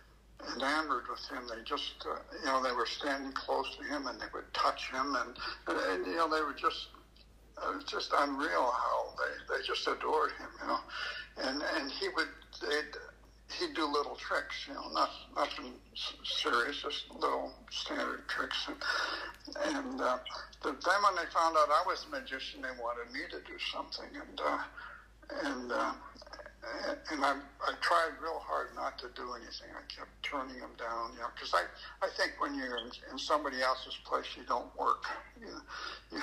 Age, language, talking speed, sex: 60-79, English, 185 wpm, male